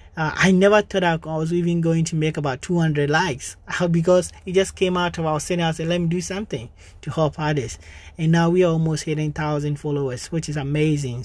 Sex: male